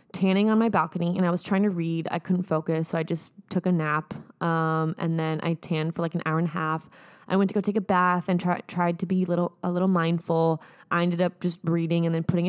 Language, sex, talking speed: English, female, 265 wpm